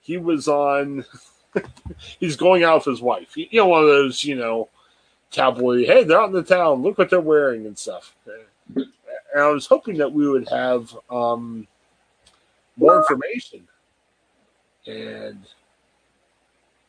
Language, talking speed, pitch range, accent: English, 150 wpm, 135-195 Hz, American